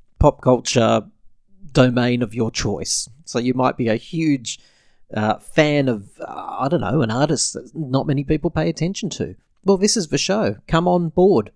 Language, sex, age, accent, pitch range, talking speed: English, male, 30-49, Australian, 110-150 Hz, 185 wpm